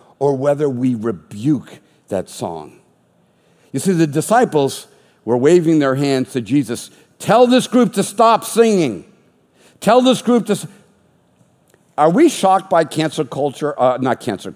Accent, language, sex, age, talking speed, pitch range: American, English, male, 50-69, 145 wpm, 125-180 Hz